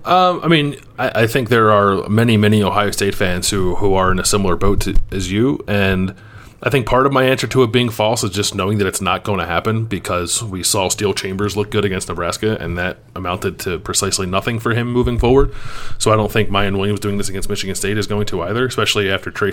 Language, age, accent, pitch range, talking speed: English, 30-49, American, 95-110 Hz, 245 wpm